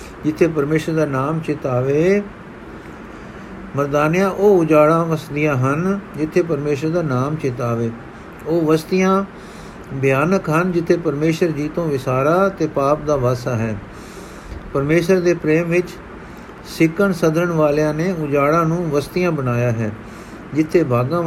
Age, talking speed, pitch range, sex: 50-69, 120 wpm, 145-180 Hz, male